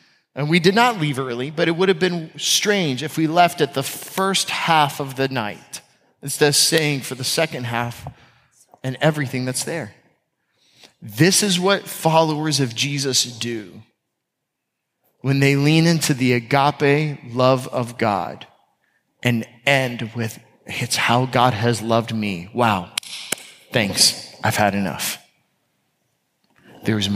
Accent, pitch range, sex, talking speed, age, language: American, 115-150 Hz, male, 140 wpm, 30-49, English